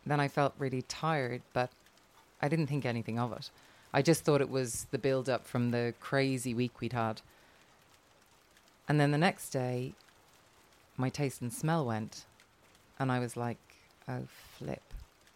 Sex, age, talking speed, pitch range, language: female, 30-49, 160 wpm, 125-145 Hz, English